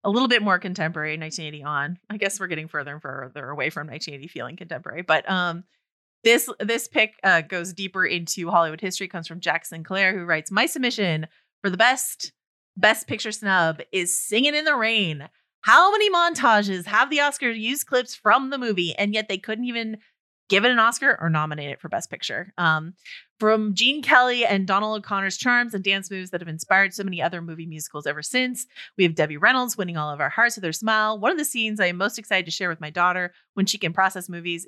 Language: English